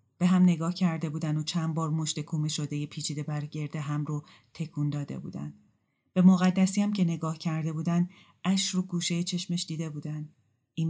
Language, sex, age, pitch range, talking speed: Persian, female, 30-49, 150-165 Hz, 175 wpm